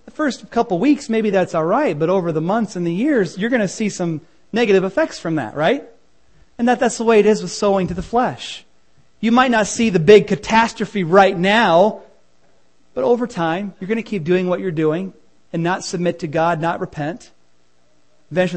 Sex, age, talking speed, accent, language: male, 40-59, 210 wpm, American, English